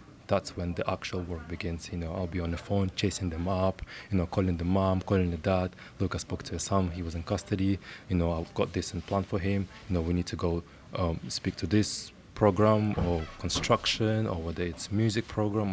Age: 20-39